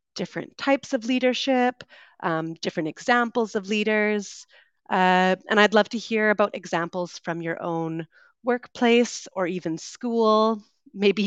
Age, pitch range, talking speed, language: 30-49, 180-240 Hz, 135 wpm, English